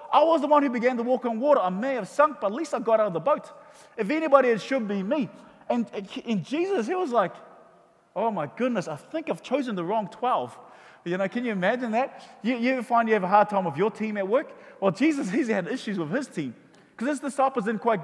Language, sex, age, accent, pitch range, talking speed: English, male, 20-39, Australian, 205-265 Hz, 255 wpm